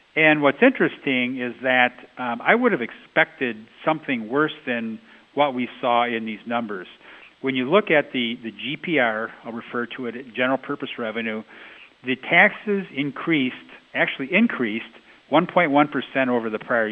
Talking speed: 155 wpm